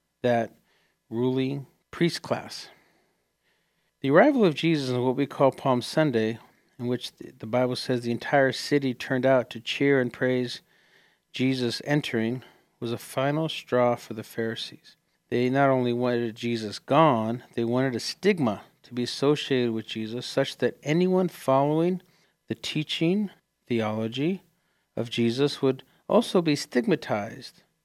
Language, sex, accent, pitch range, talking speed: English, male, American, 120-150 Hz, 140 wpm